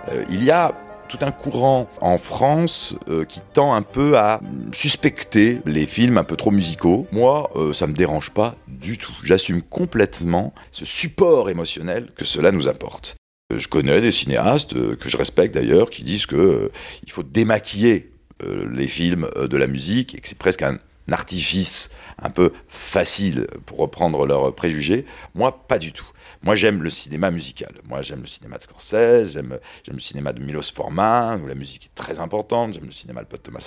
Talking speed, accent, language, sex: 195 wpm, French, French, male